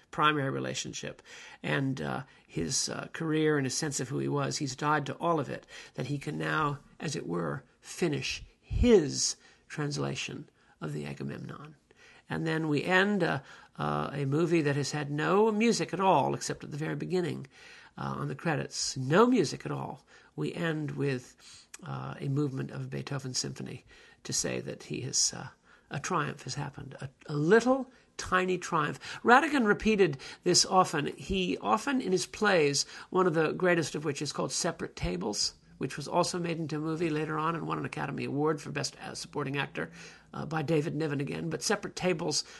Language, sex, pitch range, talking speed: English, male, 140-180 Hz, 185 wpm